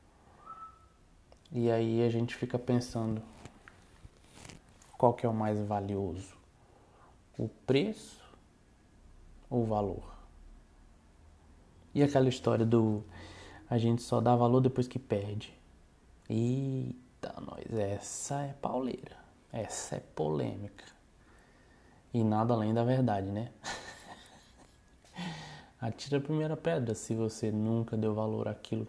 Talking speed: 110 wpm